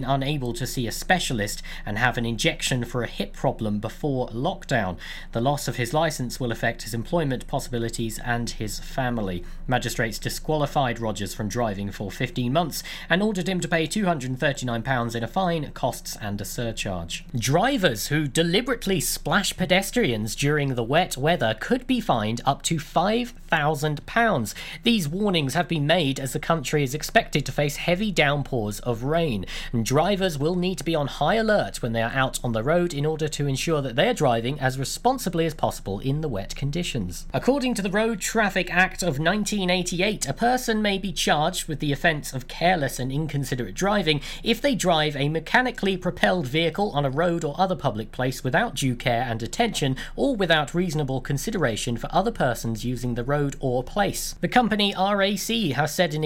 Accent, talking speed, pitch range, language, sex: British, 180 wpm, 125-180 Hz, English, male